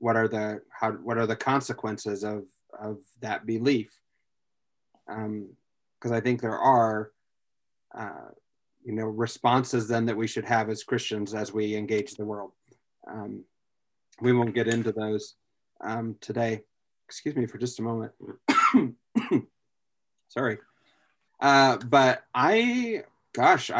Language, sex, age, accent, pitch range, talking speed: English, male, 30-49, American, 115-125 Hz, 135 wpm